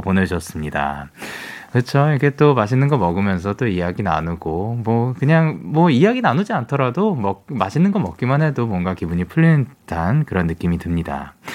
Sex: male